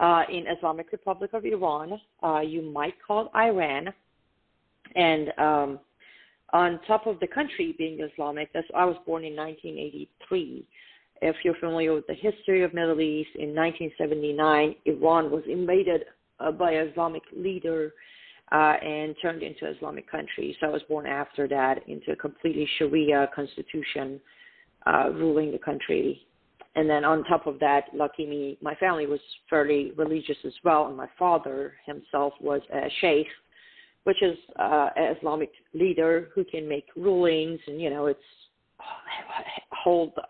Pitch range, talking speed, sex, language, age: 150-180 Hz, 150 wpm, female, English, 40-59